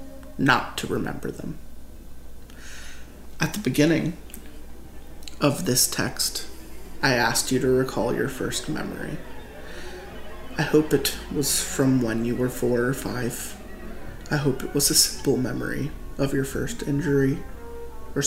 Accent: American